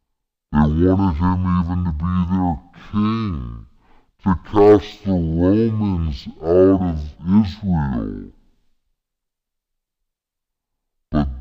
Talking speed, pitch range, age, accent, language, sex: 85 wpm, 75-90 Hz, 60-79, American, English, female